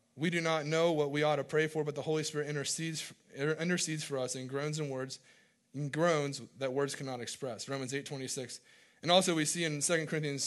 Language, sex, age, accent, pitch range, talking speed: English, male, 20-39, American, 130-155 Hz, 205 wpm